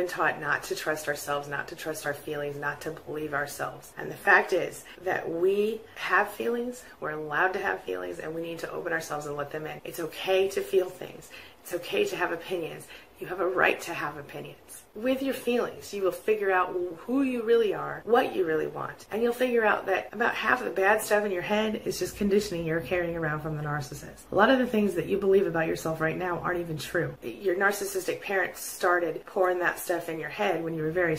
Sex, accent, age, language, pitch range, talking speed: female, American, 30-49, English, 160-205 Hz, 235 wpm